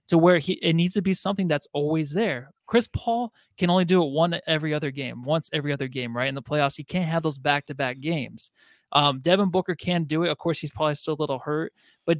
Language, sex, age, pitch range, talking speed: English, male, 20-39, 150-185 Hz, 245 wpm